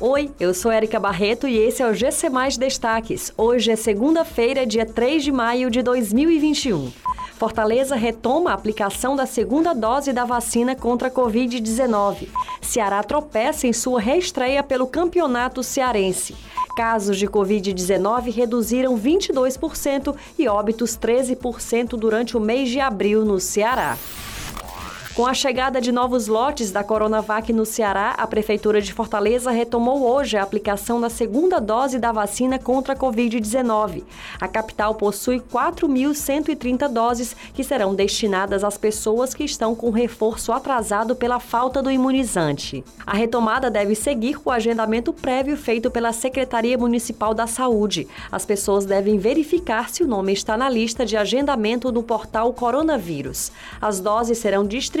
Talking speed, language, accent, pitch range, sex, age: 145 wpm, Portuguese, Brazilian, 215-260 Hz, female, 20-39